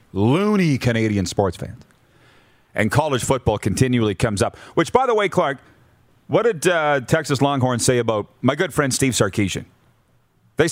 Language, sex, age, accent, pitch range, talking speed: English, male, 40-59, American, 105-140 Hz, 155 wpm